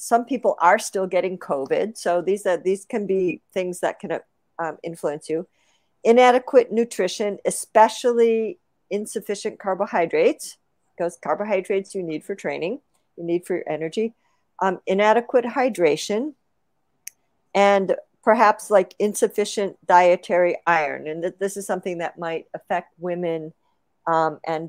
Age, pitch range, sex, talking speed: 50-69, 175-220 Hz, female, 135 wpm